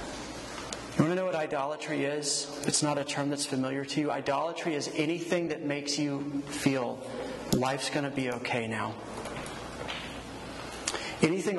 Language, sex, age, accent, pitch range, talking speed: English, male, 30-49, American, 145-170 Hz, 150 wpm